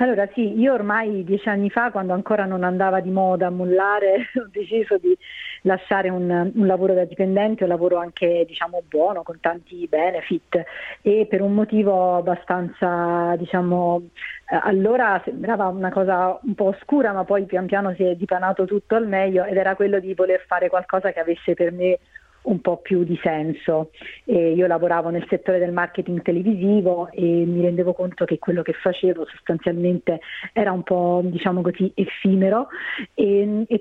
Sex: female